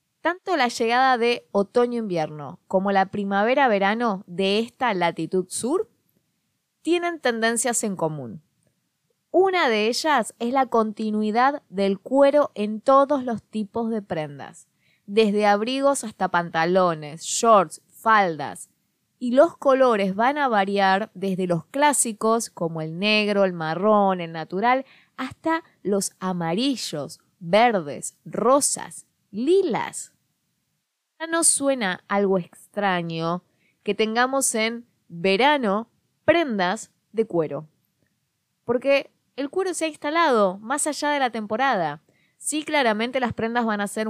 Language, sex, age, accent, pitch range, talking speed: Spanish, female, 20-39, Argentinian, 185-250 Hz, 120 wpm